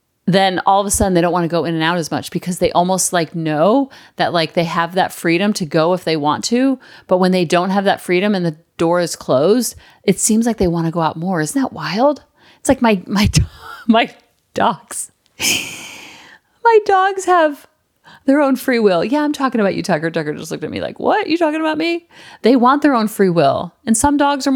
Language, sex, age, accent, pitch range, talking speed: English, female, 30-49, American, 170-230 Hz, 235 wpm